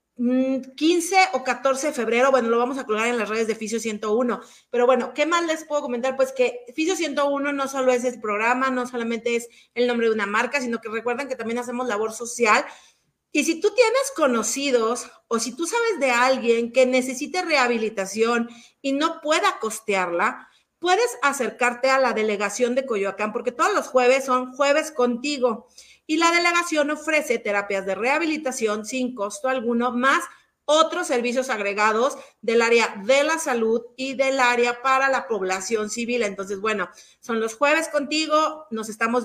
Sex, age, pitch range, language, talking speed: female, 40-59, 230-285 Hz, Spanish, 175 wpm